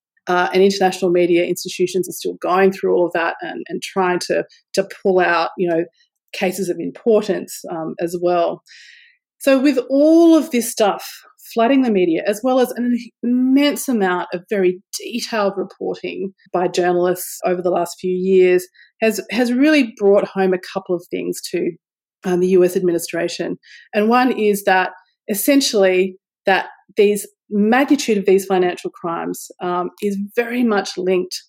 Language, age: English, 30-49